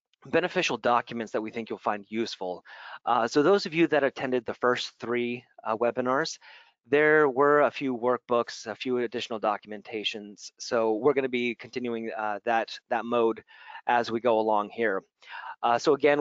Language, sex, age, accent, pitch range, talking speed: English, male, 30-49, American, 115-140 Hz, 175 wpm